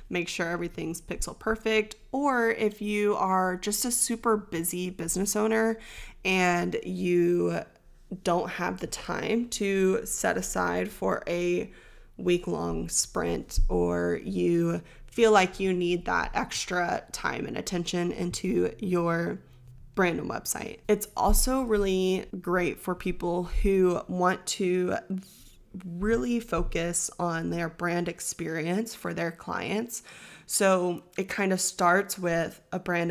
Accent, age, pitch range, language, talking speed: American, 20-39, 165-195 Hz, English, 125 wpm